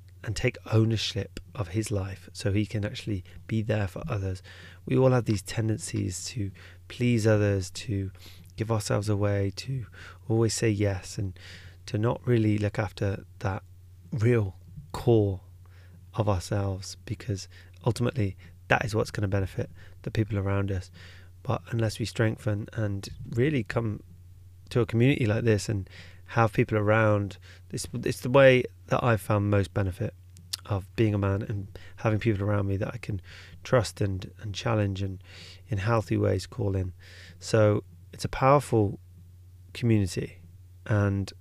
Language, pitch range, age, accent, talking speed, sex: English, 90-110 Hz, 20-39, British, 155 wpm, male